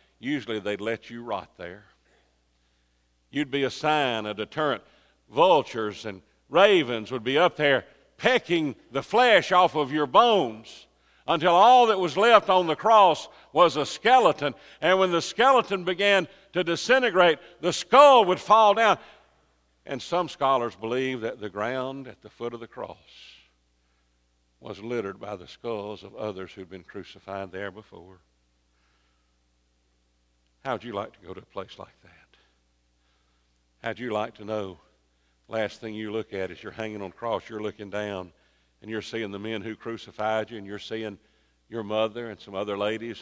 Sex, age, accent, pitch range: male, 50-69, American, 90-135 Hz